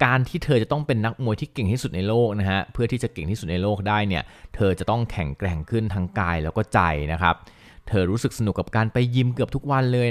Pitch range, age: 90-115 Hz, 30-49